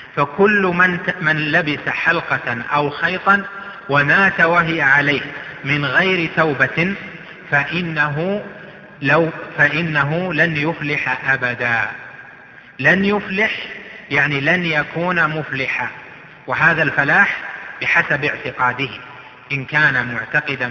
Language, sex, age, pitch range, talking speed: Arabic, male, 30-49, 125-165 Hz, 90 wpm